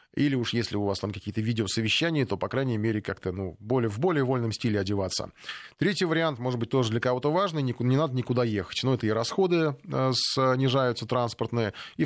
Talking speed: 195 wpm